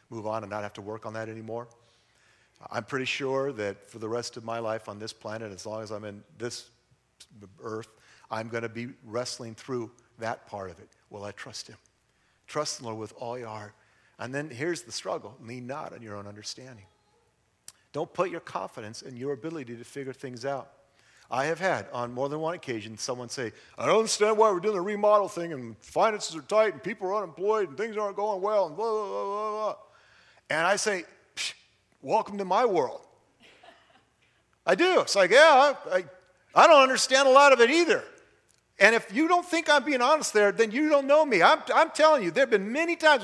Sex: male